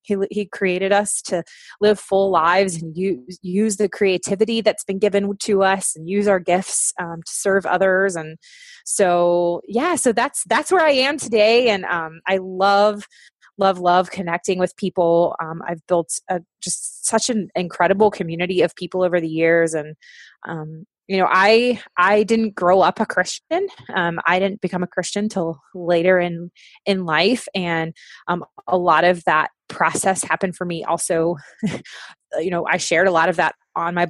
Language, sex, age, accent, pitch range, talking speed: English, female, 20-39, American, 170-205 Hz, 180 wpm